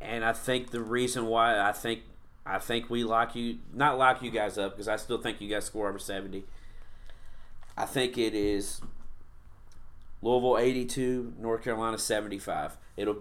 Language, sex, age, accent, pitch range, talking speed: English, male, 30-49, American, 100-125 Hz, 175 wpm